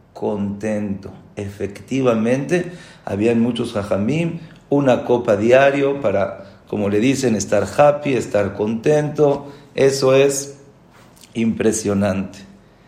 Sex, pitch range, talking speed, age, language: male, 105-135 Hz, 90 wpm, 50-69, English